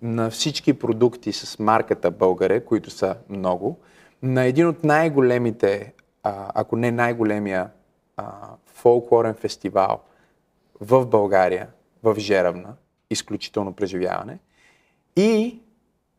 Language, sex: Bulgarian, male